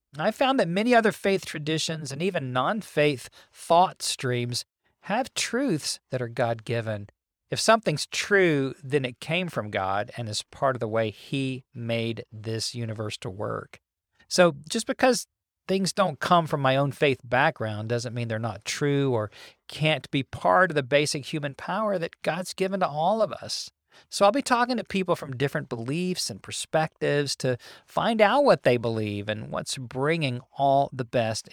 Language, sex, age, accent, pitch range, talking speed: English, male, 40-59, American, 120-160 Hz, 175 wpm